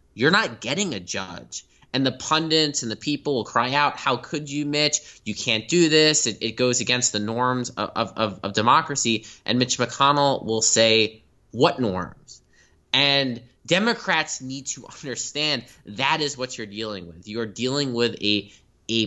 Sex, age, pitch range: male, 20-39, 100-135 Hz